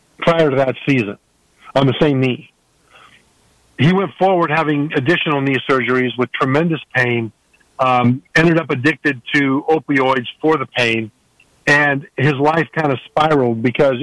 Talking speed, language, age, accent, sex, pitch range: 145 wpm, English, 50-69, American, male, 130-155 Hz